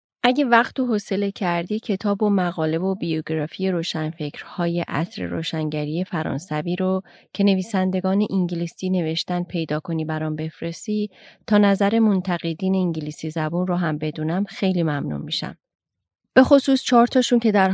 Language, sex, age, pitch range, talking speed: Persian, female, 30-49, 170-205 Hz, 135 wpm